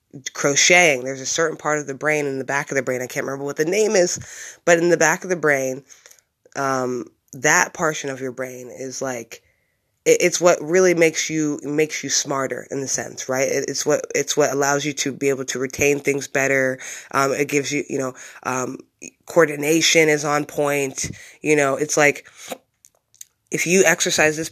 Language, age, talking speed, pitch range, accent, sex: English, 20-39, 195 wpm, 135-170 Hz, American, female